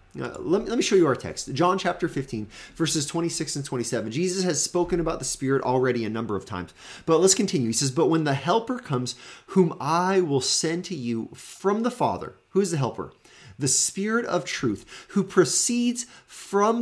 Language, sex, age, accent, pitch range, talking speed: English, male, 30-49, American, 125-195 Hz, 200 wpm